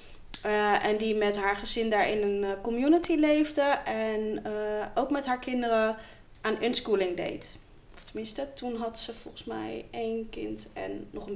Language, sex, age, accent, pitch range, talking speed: Dutch, female, 20-39, Dutch, 210-265 Hz, 170 wpm